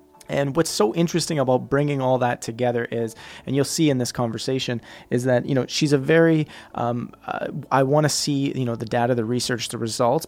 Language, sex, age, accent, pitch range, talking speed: English, male, 30-49, American, 120-140 Hz, 215 wpm